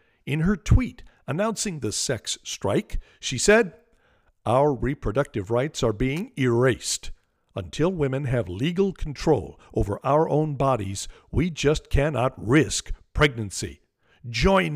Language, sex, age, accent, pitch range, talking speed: English, male, 50-69, American, 120-155 Hz, 120 wpm